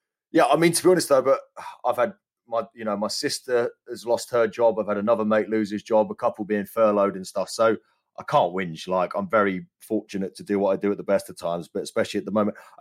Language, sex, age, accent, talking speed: English, male, 30-49, British, 260 wpm